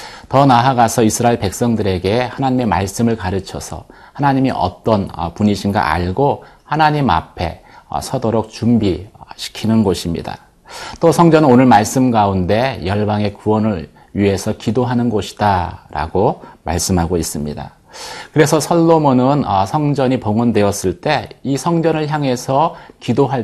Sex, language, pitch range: male, Korean, 100-130 Hz